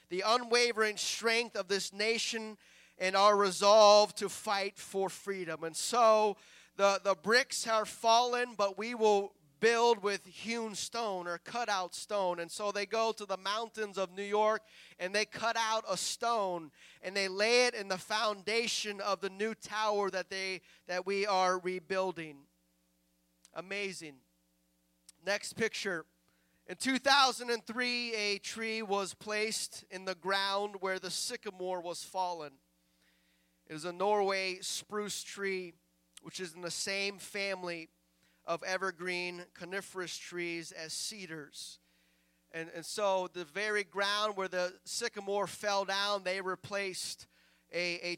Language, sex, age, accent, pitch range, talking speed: English, male, 30-49, American, 170-210 Hz, 140 wpm